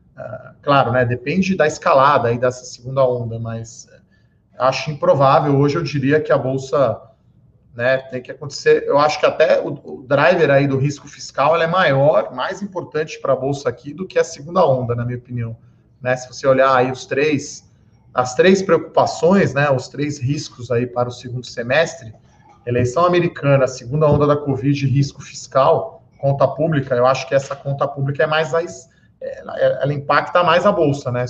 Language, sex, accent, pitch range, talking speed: Portuguese, male, Brazilian, 125-145 Hz, 180 wpm